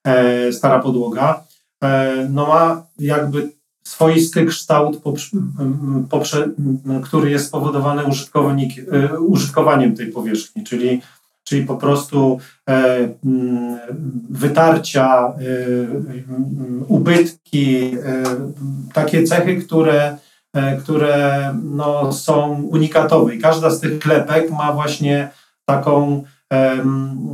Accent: native